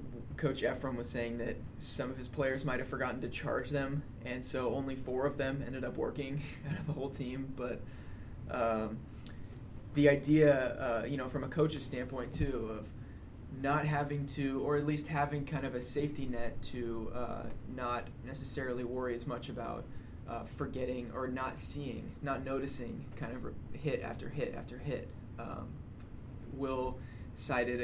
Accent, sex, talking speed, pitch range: American, male, 170 wpm, 120-140 Hz